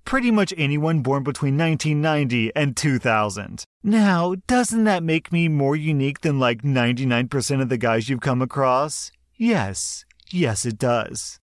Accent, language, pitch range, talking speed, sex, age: American, English, 120-155 Hz, 145 wpm, male, 40-59